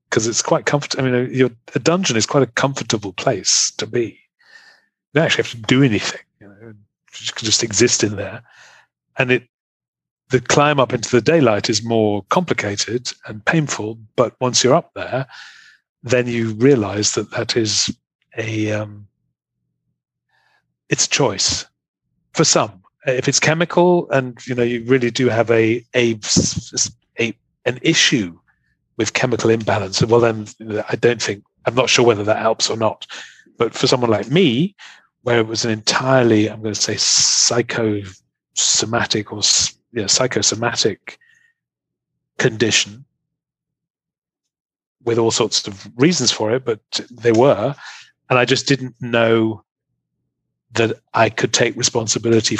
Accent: British